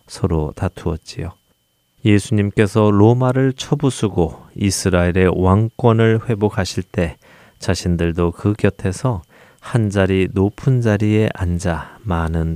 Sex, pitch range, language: male, 90-115 Hz, Korean